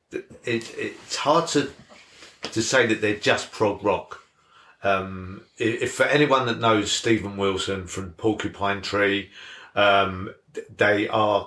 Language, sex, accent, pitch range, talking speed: English, male, British, 100-115 Hz, 130 wpm